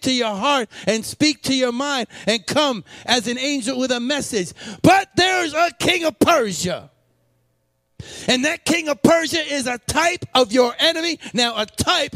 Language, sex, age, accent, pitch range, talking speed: English, male, 40-59, American, 230-310 Hz, 180 wpm